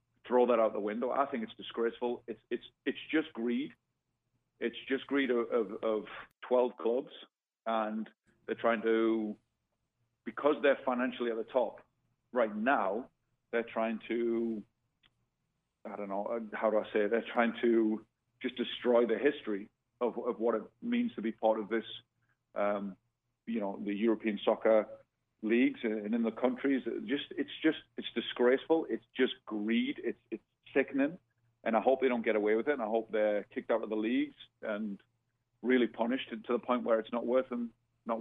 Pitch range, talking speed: 110-125 Hz, 180 wpm